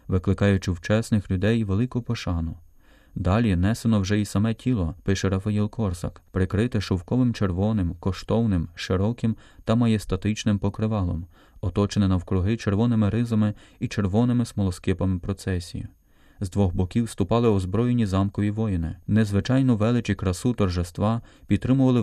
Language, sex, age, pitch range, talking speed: Ukrainian, male, 30-49, 95-115 Hz, 115 wpm